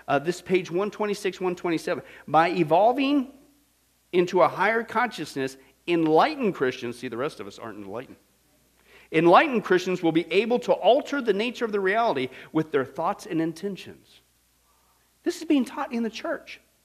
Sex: male